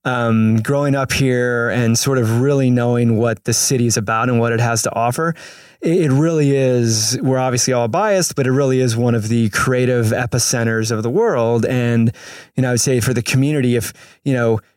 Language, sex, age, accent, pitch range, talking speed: English, male, 20-39, American, 115-135 Hz, 205 wpm